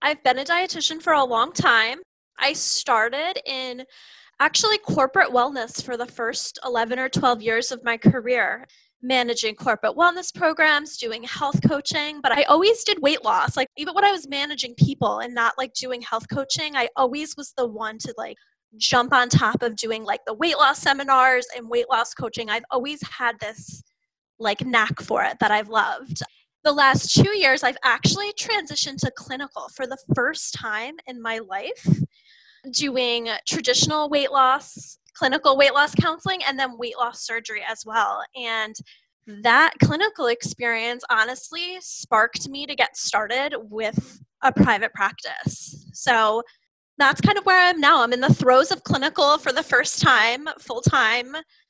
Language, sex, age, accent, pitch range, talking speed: English, female, 10-29, American, 235-295 Hz, 170 wpm